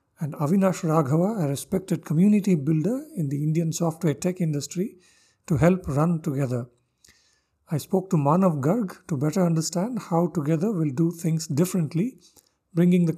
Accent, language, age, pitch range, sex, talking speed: Indian, English, 50-69, 145-175 Hz, male, 150 wpm